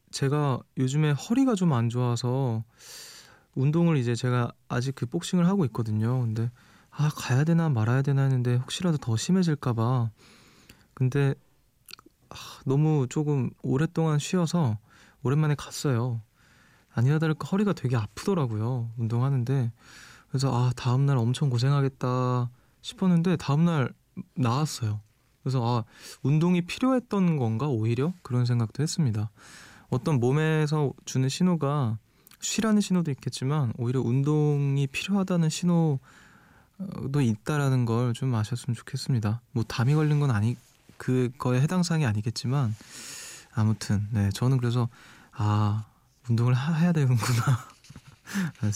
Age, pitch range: 20-39, 120-150 Hz